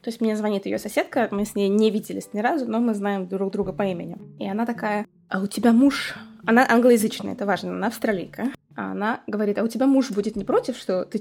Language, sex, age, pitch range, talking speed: Russian, female, 20-39, 200-245 Hz, 235 wpm